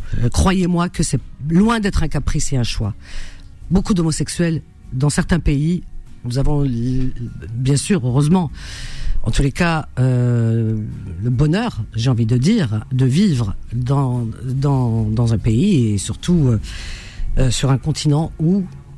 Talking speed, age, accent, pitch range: 145 wpm, 50-69, French, 115-150 Hz